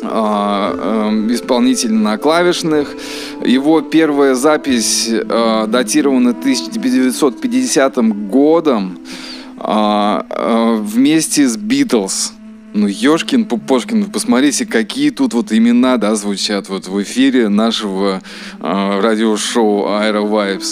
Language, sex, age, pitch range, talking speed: Russian, male, 20-39, 110-175 Hz, 100 wpm